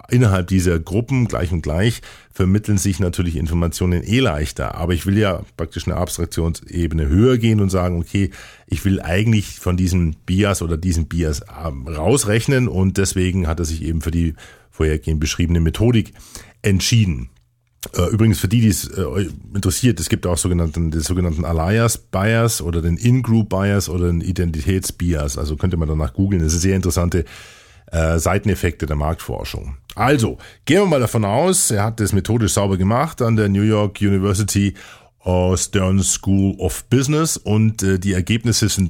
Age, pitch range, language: 50-69, 85-115 Hz, German